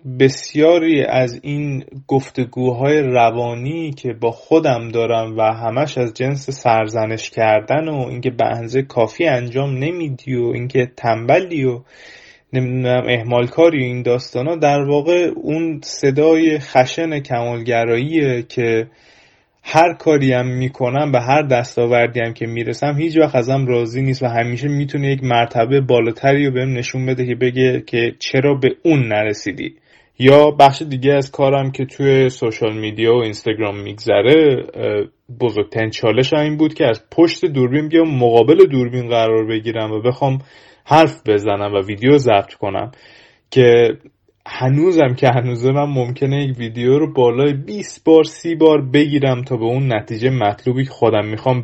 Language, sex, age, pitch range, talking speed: Persian, male, 20-39, 120-145 Hz, 145 wpm